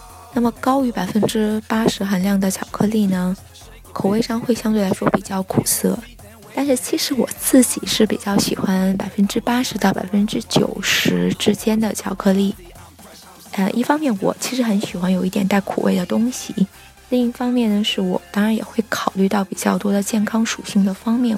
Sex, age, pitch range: female, 20-39, 195-230 Hz